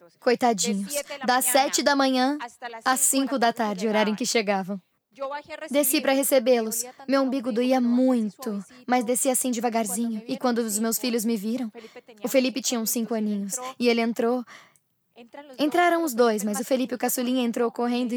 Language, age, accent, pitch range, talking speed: English, 10-29, Brazilian, 230-275 Hz, 170 wpm